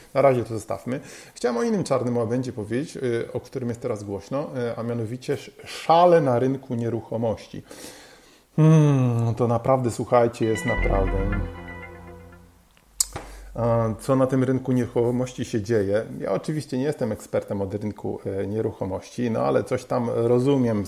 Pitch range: 105-130 Hz